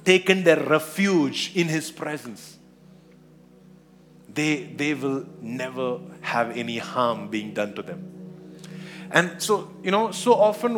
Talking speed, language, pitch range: 130 wpm, English, 135-180 Hz